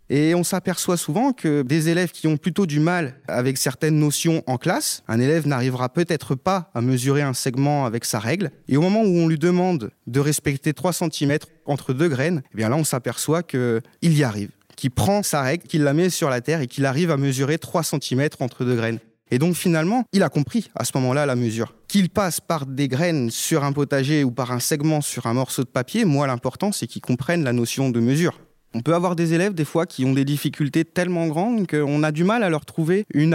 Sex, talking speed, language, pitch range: male, 230 wpm, French, 130-170 Hz